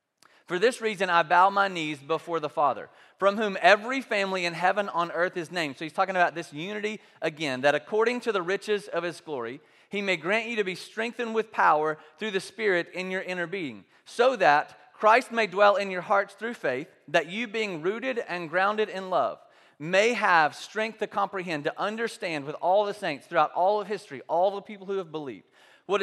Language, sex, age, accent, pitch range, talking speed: English, male, 30-49, American, 160-210 Hz, 210 wpm